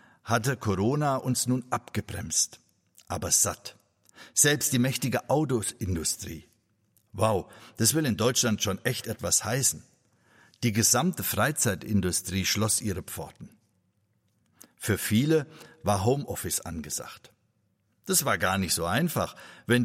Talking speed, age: 115 wpm, 60-79